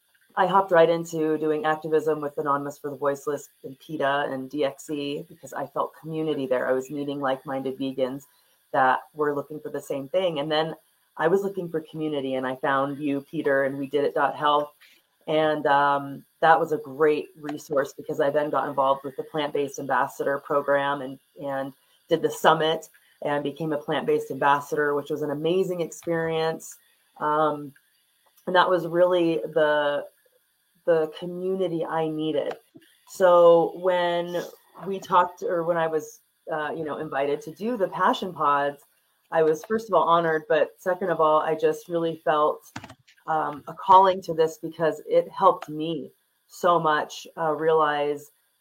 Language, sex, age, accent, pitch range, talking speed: English, female, 30-49, American, 145-170 Hz, 170 wpm